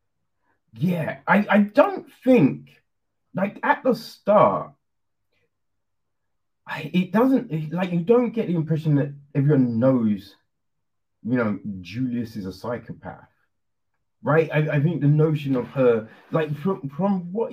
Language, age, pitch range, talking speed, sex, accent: English, 30-49, 120-170 Hz, 135 wpm, male, British